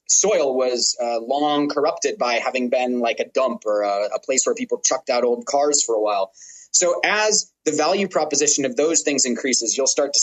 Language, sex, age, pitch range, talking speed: English, male, 30-49, 120-155 Hz, 210 wpm